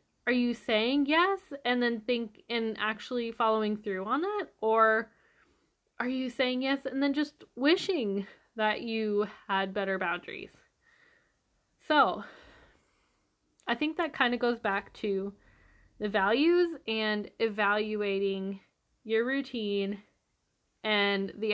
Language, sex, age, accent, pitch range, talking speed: English, female, 10-29, American, 210-255 Hz, 125 wpm